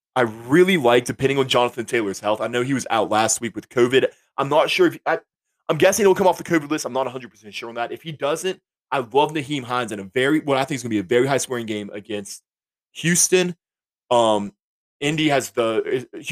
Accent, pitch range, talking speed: American, 105-145 Hz, 230 wpm